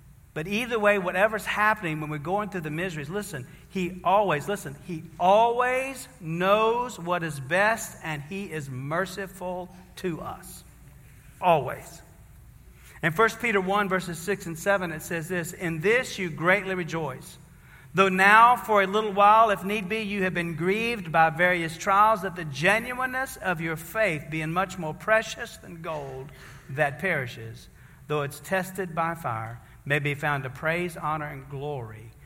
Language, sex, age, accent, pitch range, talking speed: English, male, 50-69, American, 140-200 Hz, 160 wpm